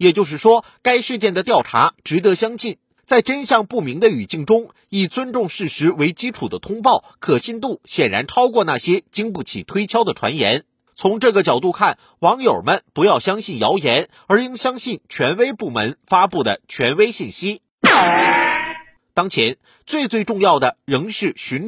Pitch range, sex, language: 190-245 Hz, male, Chinese